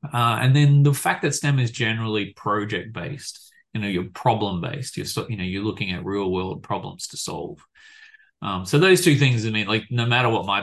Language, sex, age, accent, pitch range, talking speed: English, male, 30-49, Australian, 95-140 Hz, 225 wpm